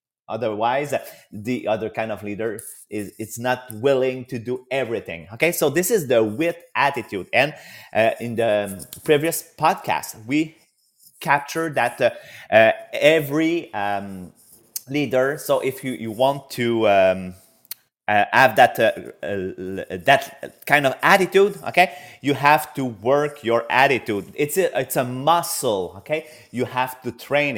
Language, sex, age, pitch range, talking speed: English, male, 30-49, 120-150 Hz, 145 wpm